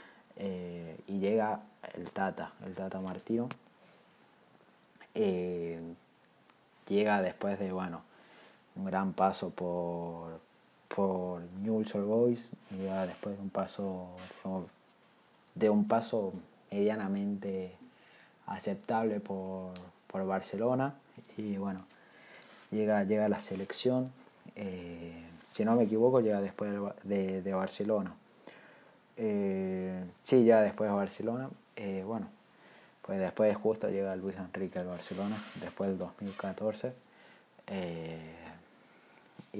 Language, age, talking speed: Spanish, 20-39, 105 wpm